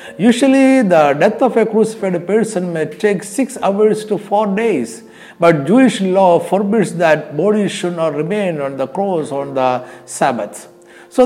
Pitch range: 135-210 Hz